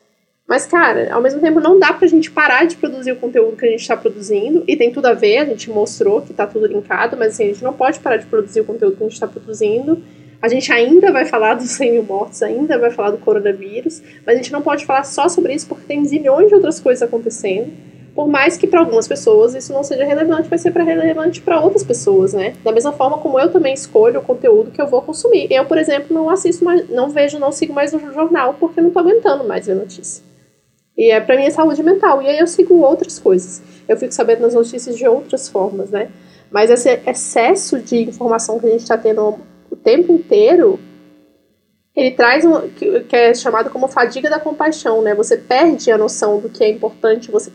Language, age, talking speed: Portuguese, 10-29, 230 wpm